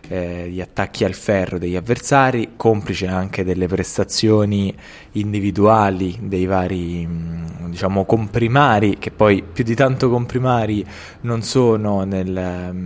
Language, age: Italian, 20-39